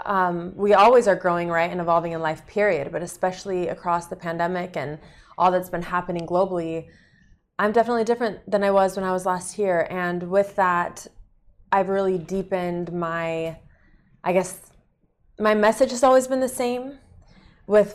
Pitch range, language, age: 165-190 Hz, Arabic, 20-39